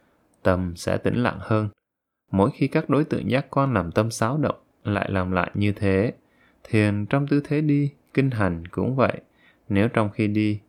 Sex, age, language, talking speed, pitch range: male, 20-39, Vietnamese, 190 wpm, 95-130 Hz